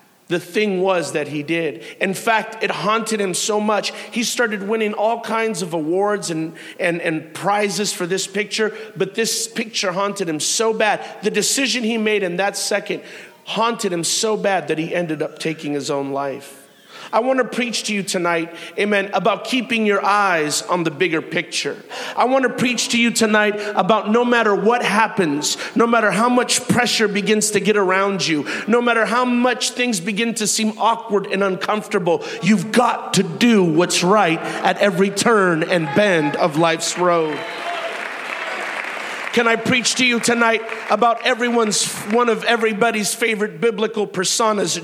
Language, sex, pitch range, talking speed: English, male, 190-235 Hz, 175 wpm